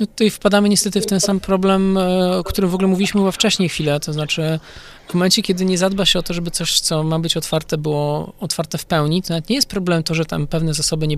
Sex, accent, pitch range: male, native, 150-180 Hz